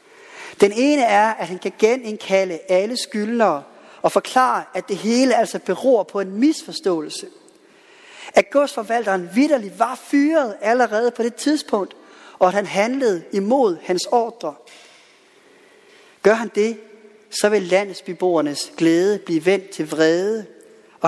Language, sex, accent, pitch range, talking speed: Danish, male, native, 180-245 Hz, 135 wpm